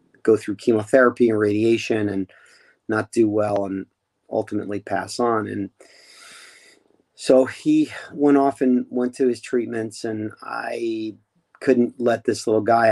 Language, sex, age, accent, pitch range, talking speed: English, male, 40-59, American, 110-130 Hz, 140 wpm